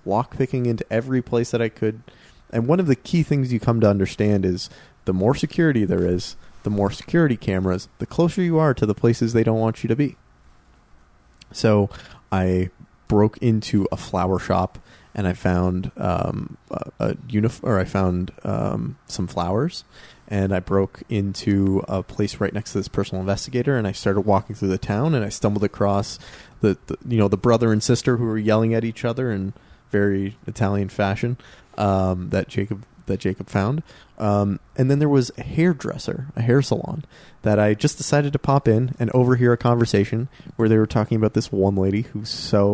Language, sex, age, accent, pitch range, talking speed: English, male, 20-39, American, 100-120 Hz, 195 wpm